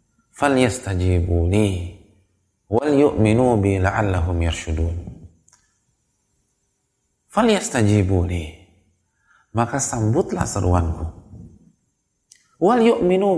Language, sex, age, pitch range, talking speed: Indonesian, male, 30-49, 90-115 Hz, 45 wpm